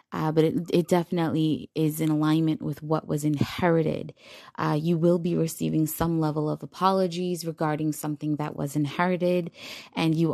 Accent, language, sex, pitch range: American, English, female, 145-170 Hz